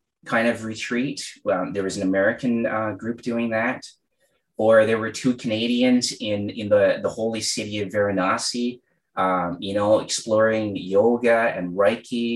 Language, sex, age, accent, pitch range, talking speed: English, male, 30-49, American, 105-130 Hz, 155 wpm